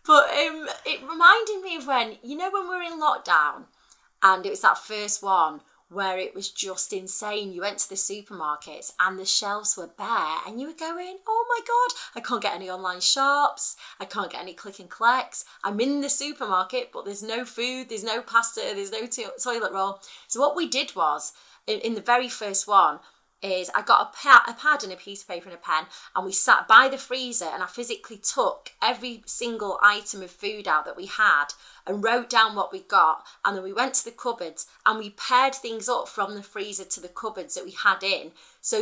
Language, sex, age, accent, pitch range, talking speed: English, female, 30-49, British, 195-285 Hz, 225 wpm